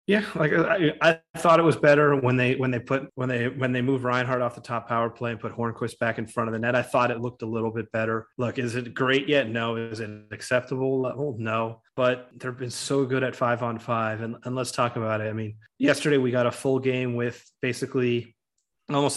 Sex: male